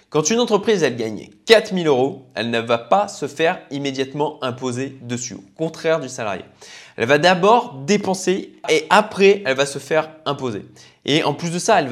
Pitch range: 130-190 Hz